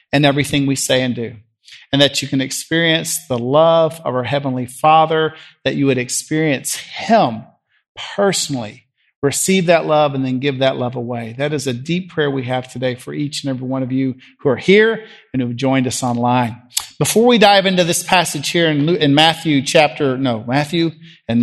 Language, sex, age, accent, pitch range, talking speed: English, male, 40-59, American, 125-150 Hz, 195 wpm